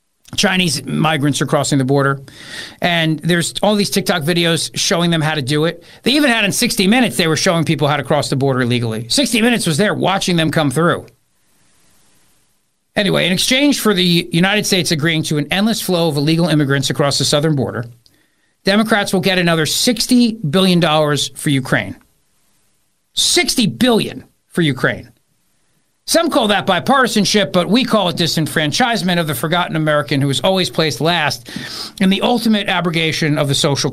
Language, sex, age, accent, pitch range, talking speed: English, male, 50-69, American, 150-200 Hz, 175 wpm